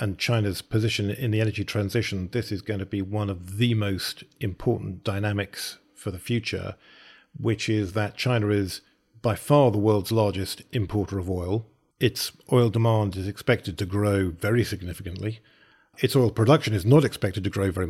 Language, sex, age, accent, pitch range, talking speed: English, male, 40-59, British, 100-115 Hz, 175 wpm